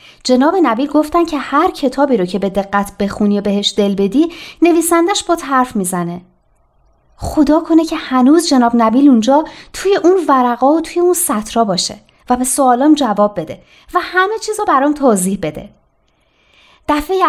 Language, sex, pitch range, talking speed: Persian, female, 205-300 Hz, 160 wpm